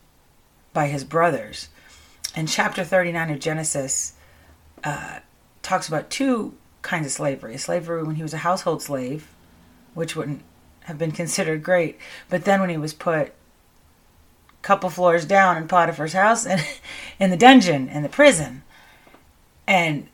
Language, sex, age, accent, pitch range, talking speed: English, female, 30-49, American, 150-185 Hz, 150 wpm